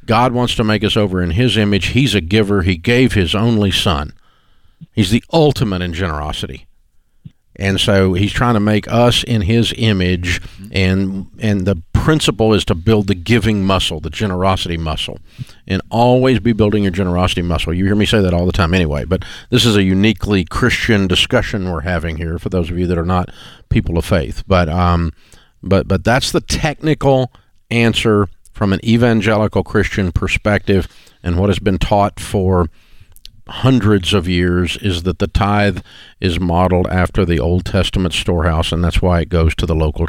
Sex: male